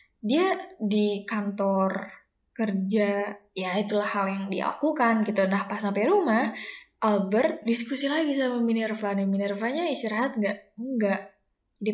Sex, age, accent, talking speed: female, 10-29, Indonesian, 125 wpm